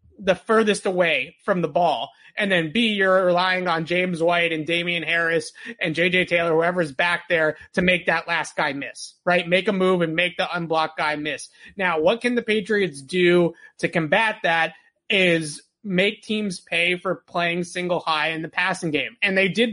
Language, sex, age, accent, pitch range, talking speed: English, male, 30-49, American, 165-195 Hz, 190 wpm